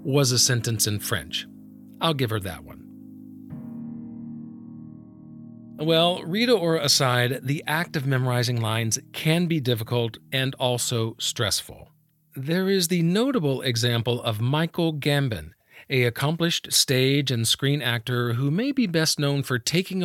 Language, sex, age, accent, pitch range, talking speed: English, male, 40-59, American, 120-165 Hz, 140 wpm